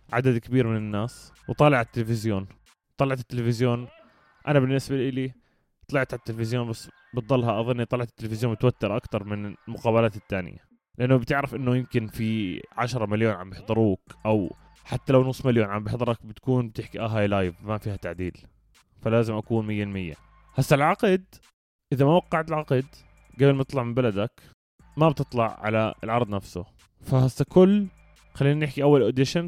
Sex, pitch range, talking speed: male, 110-140 Hz, 155 wpm